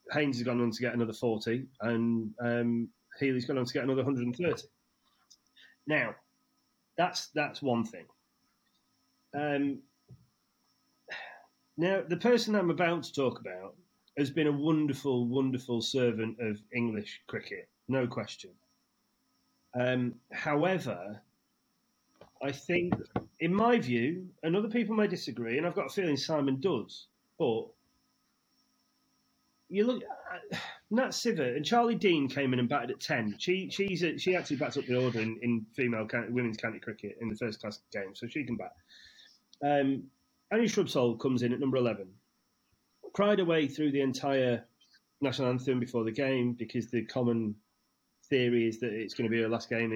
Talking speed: 160 wpm